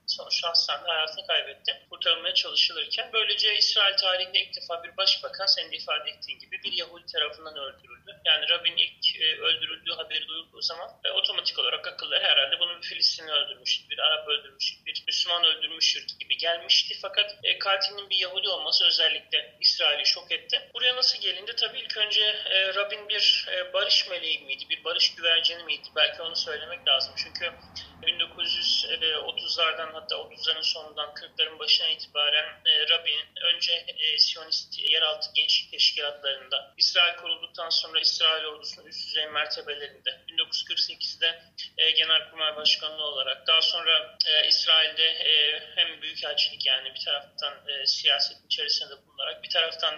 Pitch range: 155-195 Hz